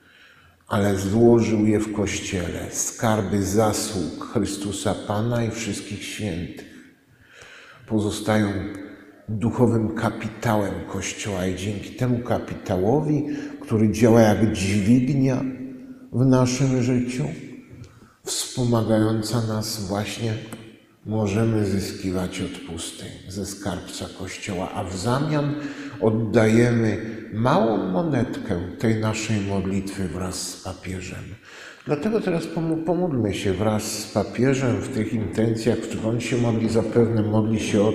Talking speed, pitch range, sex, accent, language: 110 wpm, 100-120 Hz, male, native, Polish